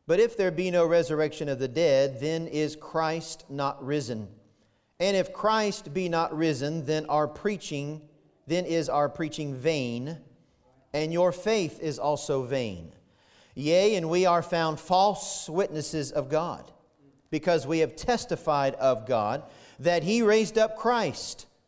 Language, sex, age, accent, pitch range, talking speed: English, male, 40-59, American, 140-185 Hz, 150 wpm